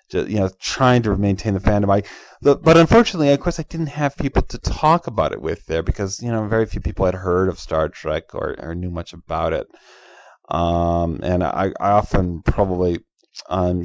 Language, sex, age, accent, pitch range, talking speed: English, male, 30-49, American, 90-125 Hz, 210 wpm